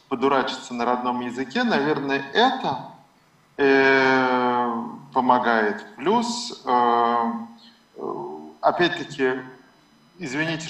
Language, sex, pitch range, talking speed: Russian, male, 120-150 Hz, 65 wpm